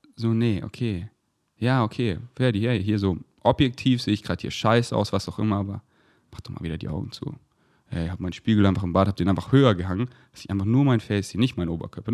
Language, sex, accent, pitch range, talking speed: German, male, German, 100-155 Hz, 245 wpm